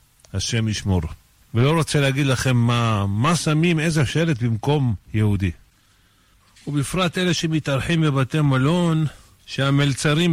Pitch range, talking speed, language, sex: 120-160 Hz, 110 wpm, Hebrew, male